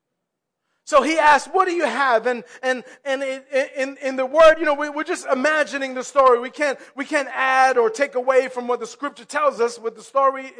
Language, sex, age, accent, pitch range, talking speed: English, male, 30-49, American, 250-300 Hz, 225 wpm